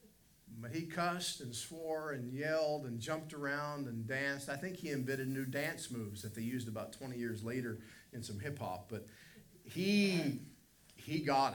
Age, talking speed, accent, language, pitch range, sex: 50-69, 170 wpm, American, English, 115-155 Hz, male